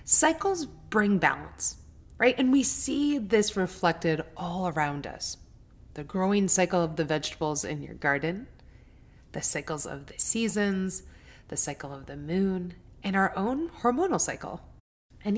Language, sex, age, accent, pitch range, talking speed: English, female, 30-49, American, 155-215 Hz, 145 wpm